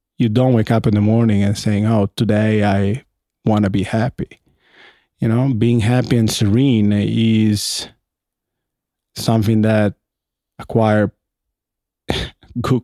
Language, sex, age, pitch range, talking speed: English, male, 20-39, 100-115 Hz, 125 wpm